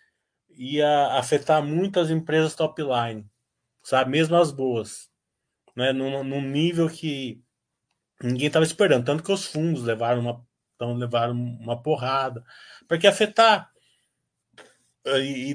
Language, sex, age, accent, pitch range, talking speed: Portuguese, male, 20-39, Brazilian, 130-195 Hz, 130 wpm